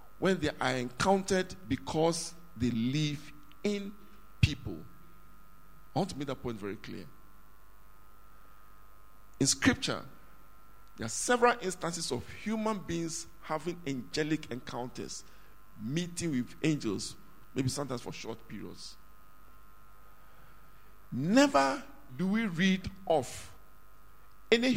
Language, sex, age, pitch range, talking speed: English, male, 50-69, 95-155 Hz, 105 wpm